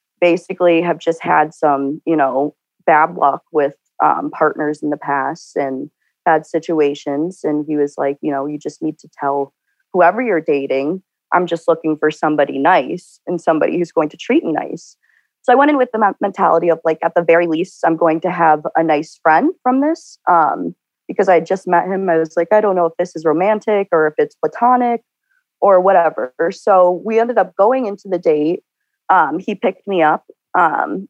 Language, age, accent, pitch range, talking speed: English, 30-49, American, 155-190 Hz, 200 wpm